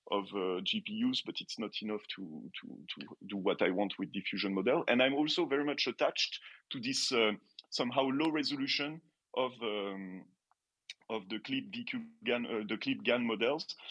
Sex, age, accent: male, 30-49, French